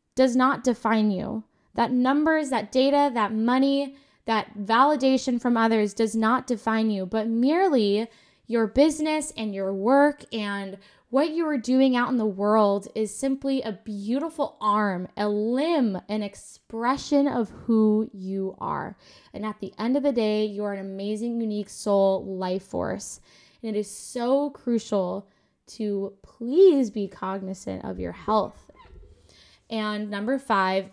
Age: 10-29